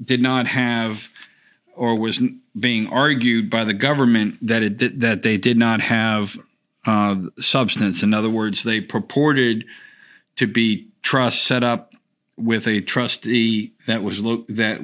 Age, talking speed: 50-69, 150 wpm